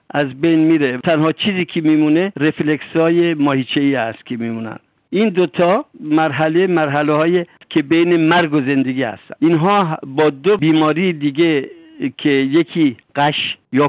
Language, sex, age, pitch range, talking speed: Persian, male, 60-79, 140-170 Hz, 140 wpm